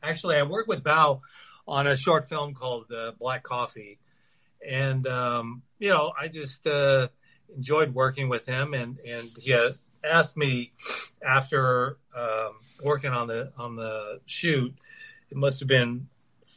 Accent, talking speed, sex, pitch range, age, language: American, 150 wpm, male, 120-145 Hz, 40-59, English